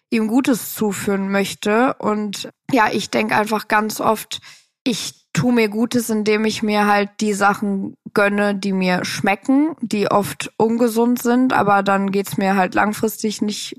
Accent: German